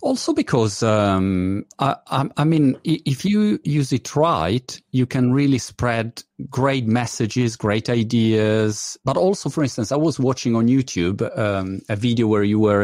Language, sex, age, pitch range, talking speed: Italian, male, 40-59, 105-140 Hz, 165 wpm